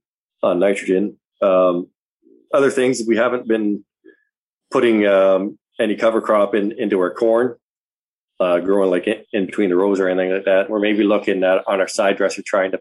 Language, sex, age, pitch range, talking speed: English, male, 20-39, 95-105 Hz, 185 wpm